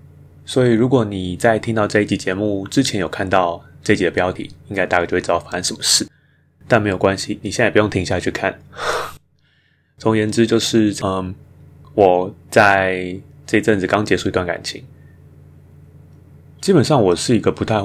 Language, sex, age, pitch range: Chinese, male, 20-39, 80-100 Hz